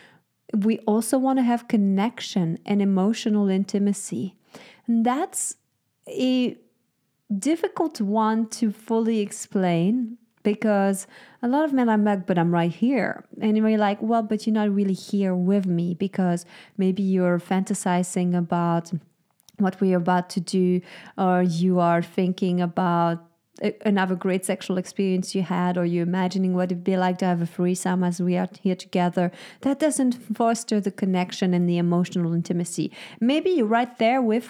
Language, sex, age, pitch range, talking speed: English, female, 30-49, 180-220 Hz, 160 wpm